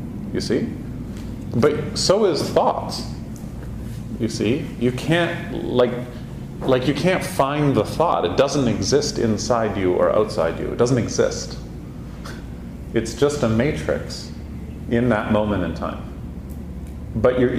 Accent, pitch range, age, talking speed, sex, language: American, 95-125 Hz, 40-59, 135 wpm, male, English